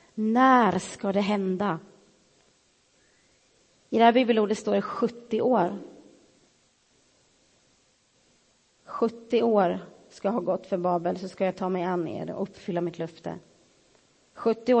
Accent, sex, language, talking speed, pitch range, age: native, female, Swedish, 130 wpm, 185-230 Hz, 30-49